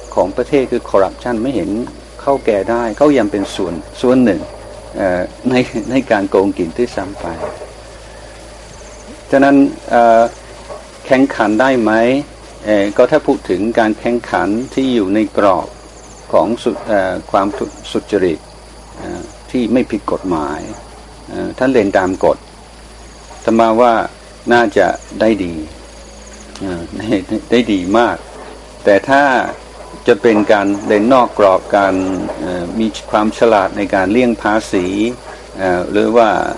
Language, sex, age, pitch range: Thai, male, 60-79, 95-120 Hz